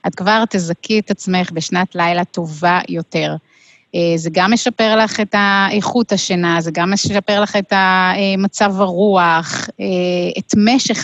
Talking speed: 135 wpm